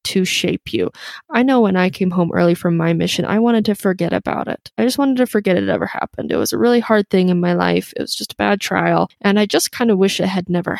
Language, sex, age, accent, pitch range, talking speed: English, female, 20-39, American, 185-230 Hz, 285 wpm